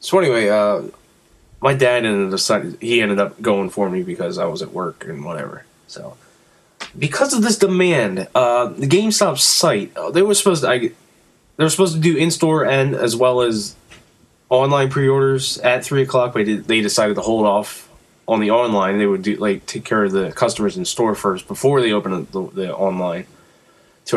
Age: 20-39